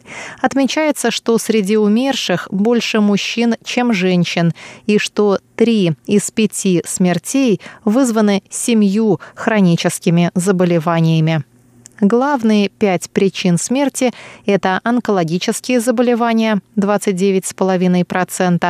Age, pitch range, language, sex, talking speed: 30-49, 180-230 Hz, Russian, female, 80 wpm